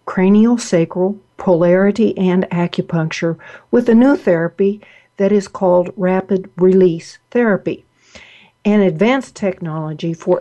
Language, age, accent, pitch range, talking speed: English, 60-79, American, 175-220 Hz, 105 wpm